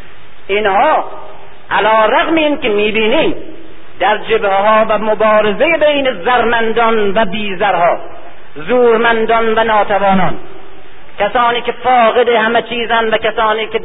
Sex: male